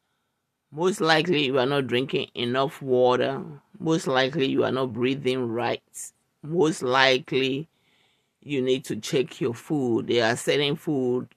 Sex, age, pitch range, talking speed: male, 50-69, 130-170 Hz, 145 wpm